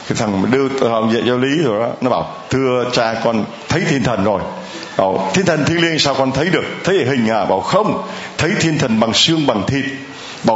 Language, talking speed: Vietnamese, 220 wpm